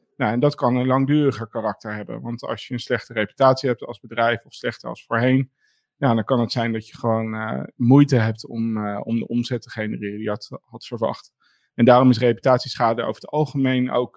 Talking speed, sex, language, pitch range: 220 wpm, male, Dutch, 120-135 Hz